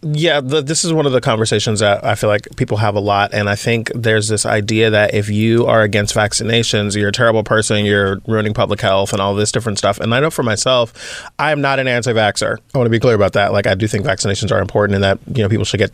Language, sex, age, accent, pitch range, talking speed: English, male, 20-39, American, 105-120 Hz, 265 wpm